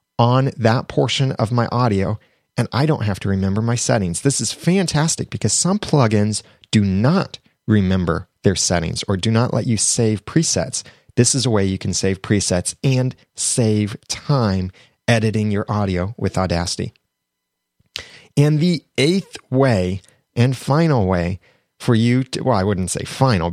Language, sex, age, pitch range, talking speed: English, male, 30-49, 105-135 Hz, 160 wpm